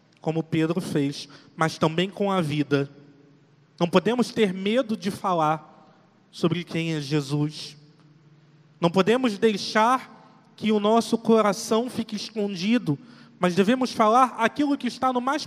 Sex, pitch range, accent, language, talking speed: male, 170-220 Hz, Brazilian, Portuguese, 135 wpm